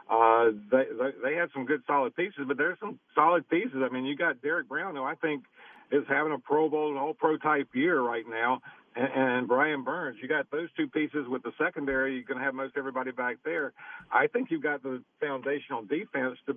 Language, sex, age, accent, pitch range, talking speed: English, male, 50-69, American, 130-150 Hz, 225 wpm